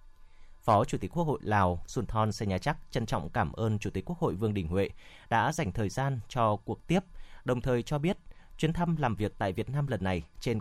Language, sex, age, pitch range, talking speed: Vietnamese, male, 20-39, 95-140 Hz, 240 wpm